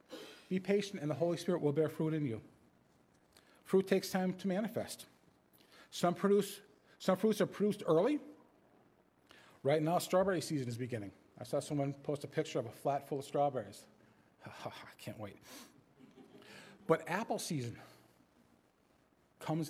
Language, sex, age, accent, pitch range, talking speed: English, male, 40-59, American, 125-170 Hz, 145 wpm